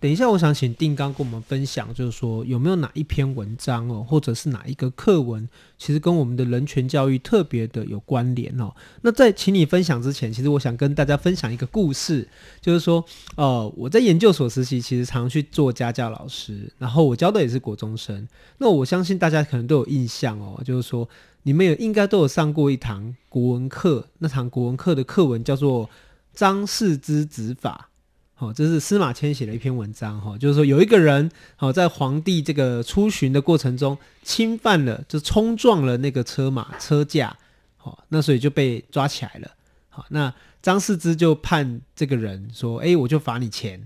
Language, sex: Chinese, male